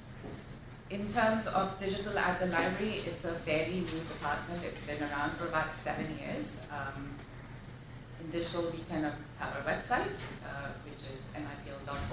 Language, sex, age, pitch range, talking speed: English, female, 30-49, 140-170 Hz, 160 wpm